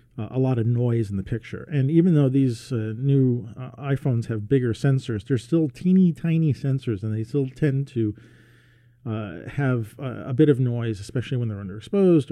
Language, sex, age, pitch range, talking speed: English, male, 40-59, 110-140 Hz, 195 wpm